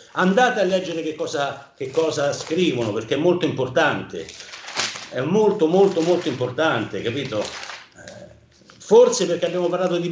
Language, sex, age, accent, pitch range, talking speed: Italian, male, 50-69, native, 120-170 Hz, 130 wpm